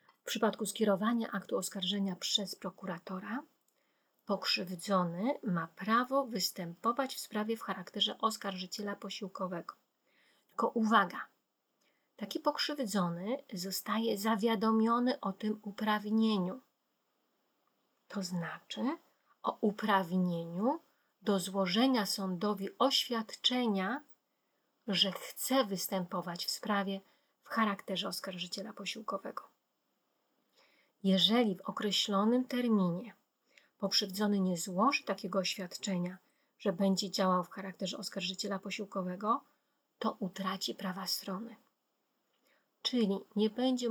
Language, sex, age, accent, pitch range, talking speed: Polish, female, 30-49, native, 195-230 Hz, 90 wpm